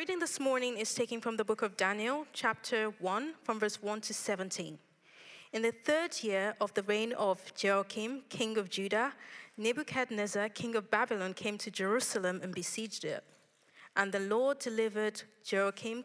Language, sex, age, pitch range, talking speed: English, female, 30-49, 195-240 Hz, 165 wpm